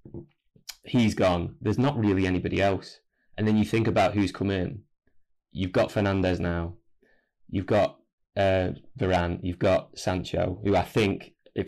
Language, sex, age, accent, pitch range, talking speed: English, male, 20-39, British, 90-105 Hz, 155 wpm